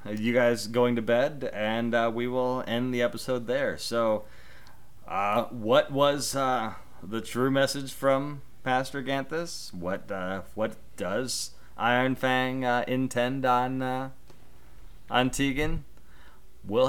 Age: 30-49